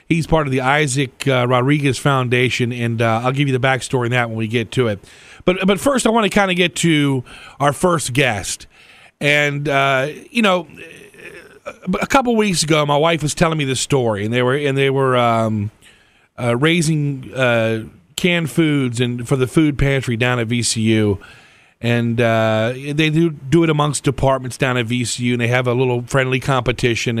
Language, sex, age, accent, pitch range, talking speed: English, male, 40-59, American, 115-150 Hz, 195 wpm